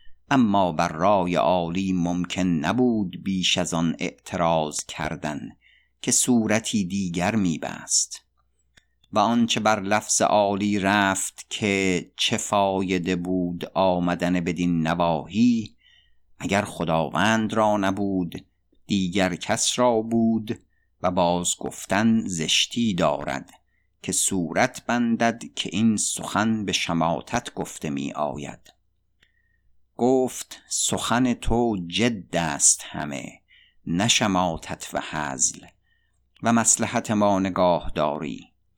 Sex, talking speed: male, 100 wpm